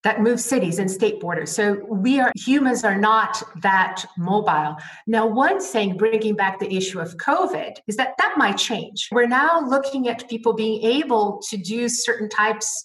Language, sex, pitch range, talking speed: English, female, 185-225 Hz, 180 wpm